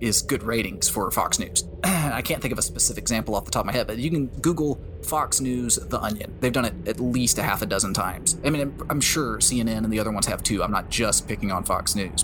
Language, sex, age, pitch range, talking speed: English, male, 20-39, 105-130 Hz, 270 wpm